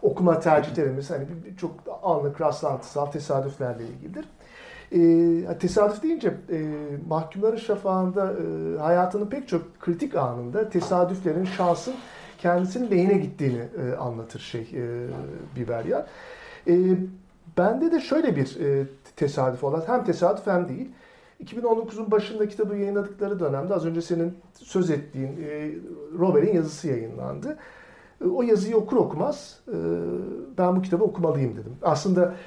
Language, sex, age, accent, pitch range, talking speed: Turkish, male, 50-69, native, 145-190 Hz, 125 wpm